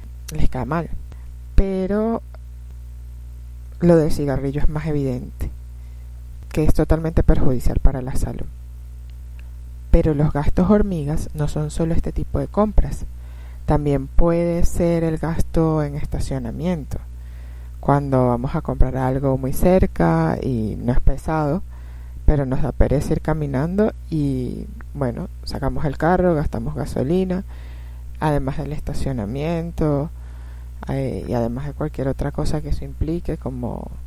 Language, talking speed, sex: Spanish, 125 wpm, female